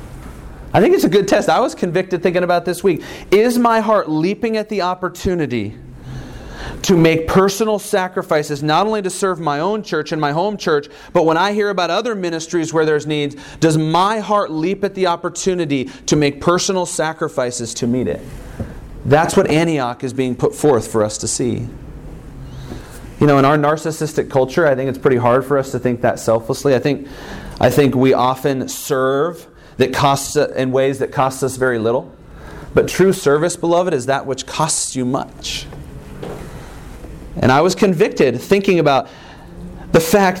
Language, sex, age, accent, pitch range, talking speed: English, male, 30-49, American, 150-205 Hz, 180 wpm